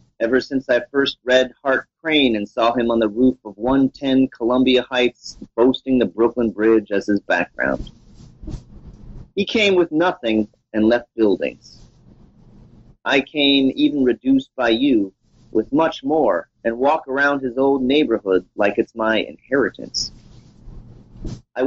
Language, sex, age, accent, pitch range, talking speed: English, male, 30-49, American, 115-150 Hz, 140 wpm